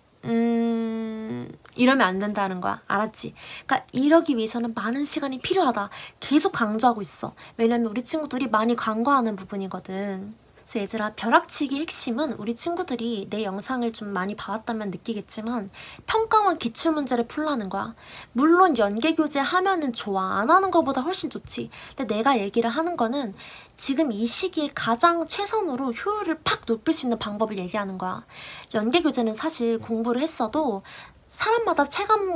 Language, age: Korean, 20-39